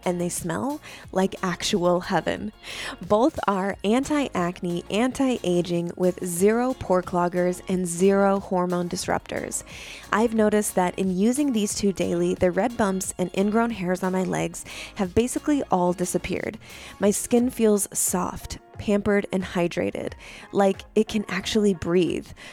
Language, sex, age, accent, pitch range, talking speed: English, female, 20-39, American, 180-225 Hz, 135 wpm